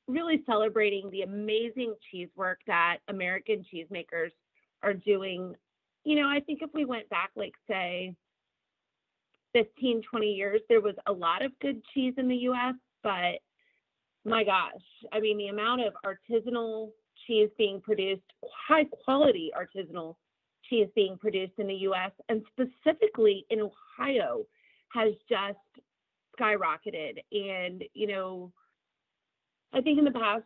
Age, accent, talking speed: 30-49, American, 140 wpm